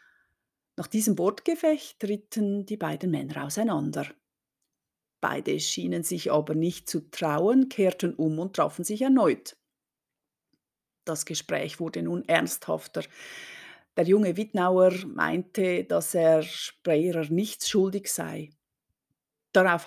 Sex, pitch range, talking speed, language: female, 160-195 Hz, 110 wpm, German